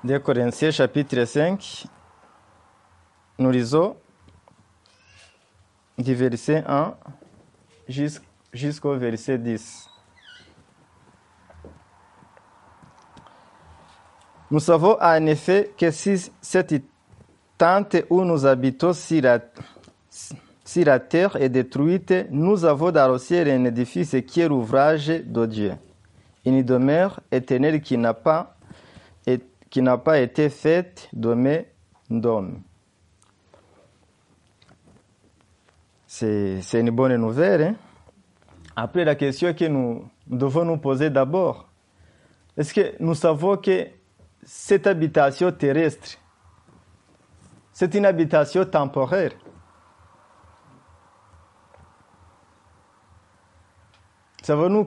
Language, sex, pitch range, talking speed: French, male, 100-165 Hz, 90 wpm